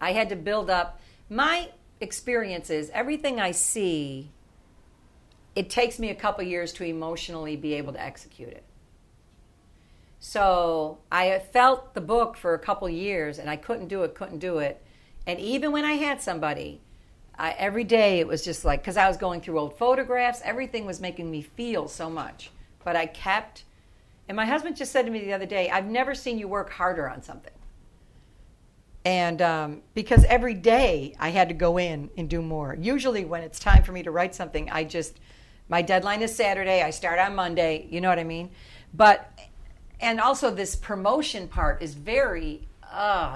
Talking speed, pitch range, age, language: 185 wpm, 160-215 Hz, 50-69, English